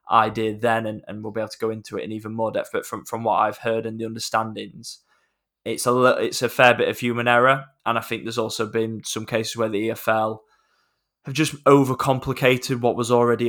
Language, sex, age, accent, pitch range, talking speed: English, male, 10-29, British, 110-120 Hz, 225 wpm